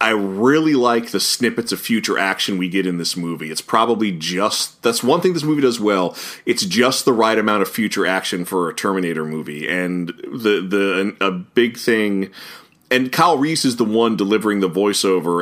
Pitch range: 95-125 Hz